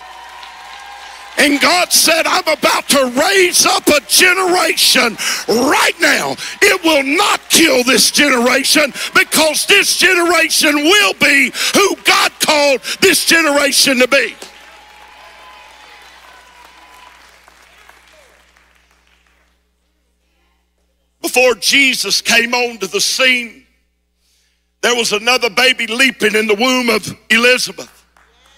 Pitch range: 190-275 Hz